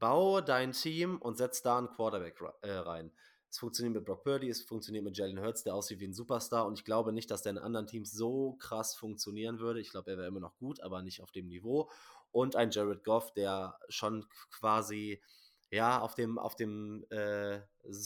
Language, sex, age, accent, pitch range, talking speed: German, male, 20-39, German, 105-140 Hz, 205 wpm